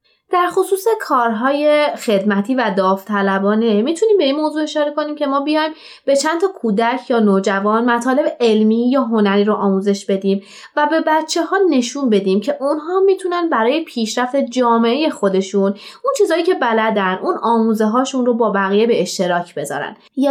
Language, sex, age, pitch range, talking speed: Persian, female, 20-39, 195-245 Hz, 165 wpm